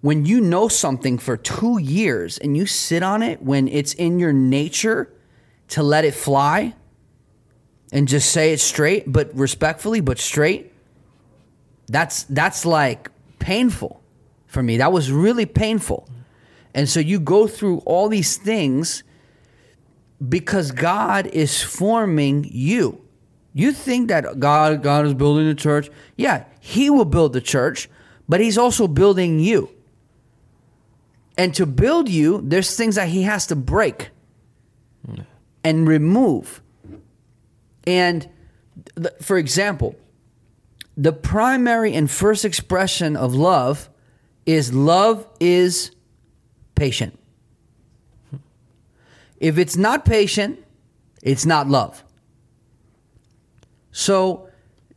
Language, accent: English, American